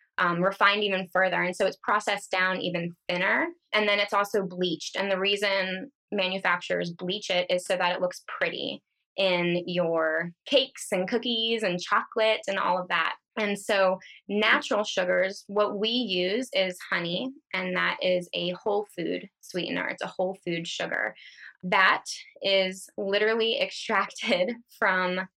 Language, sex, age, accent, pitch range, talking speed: English, female, 20-39, American, 180-215 Hz, 155 wpm